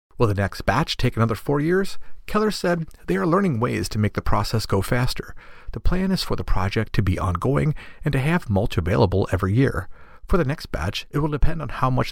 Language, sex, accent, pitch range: English, male, American, 95-140 Hz